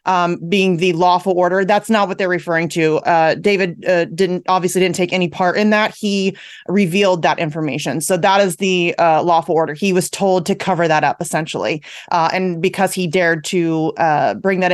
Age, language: 30-49, English